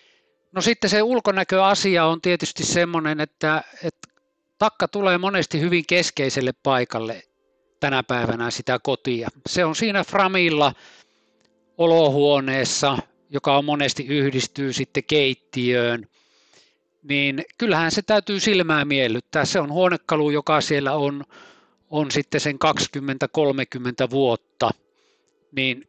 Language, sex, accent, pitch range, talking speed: Finnish, male, native, 130-170 Hz, 110 wpm